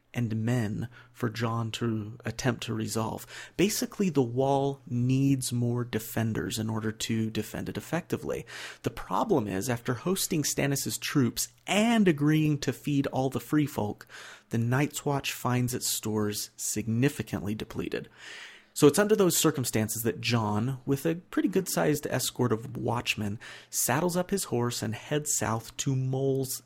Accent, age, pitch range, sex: American, 30-49, 110-135 Hz, male